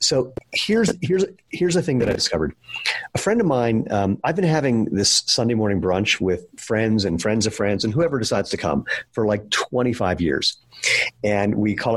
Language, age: English, 50-69